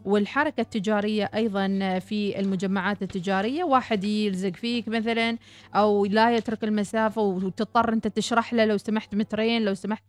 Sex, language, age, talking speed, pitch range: female, Arabic, 20-39, 135 wpm, 200-230 Hz